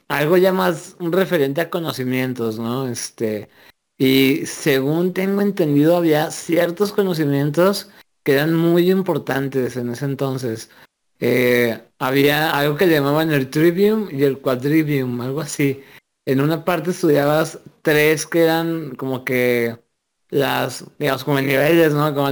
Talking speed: 135 wpm